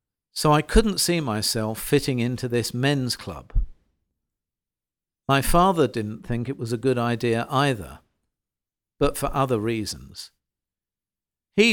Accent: British